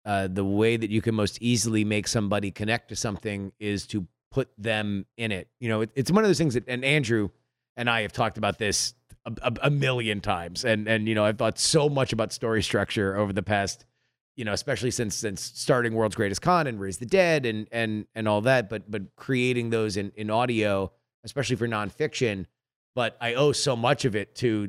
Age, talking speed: 30-49, 220 wpm